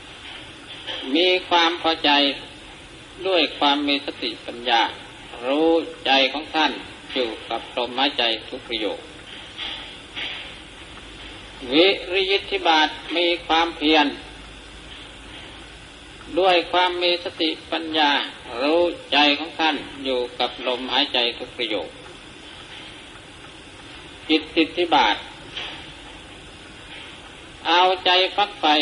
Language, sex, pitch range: Thai, male, 140-170 Hz